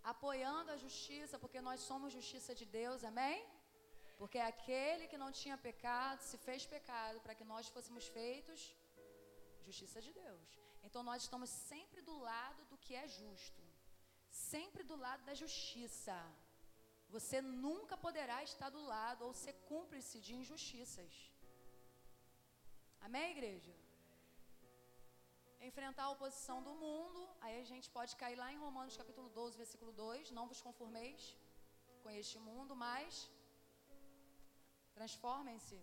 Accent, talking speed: Brazilian, 135 wpm